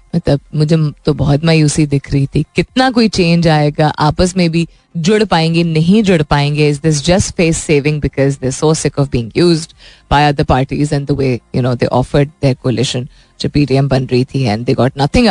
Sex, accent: female, native